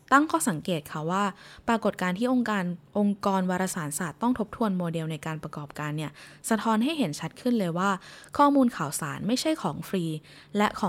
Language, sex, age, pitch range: Thai, female, 20-39, 165-240 Hz